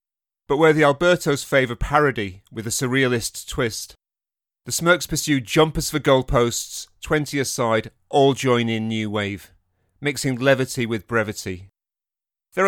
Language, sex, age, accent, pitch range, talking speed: English, male, 40-59, British, 110-140 Hz, 135 wpm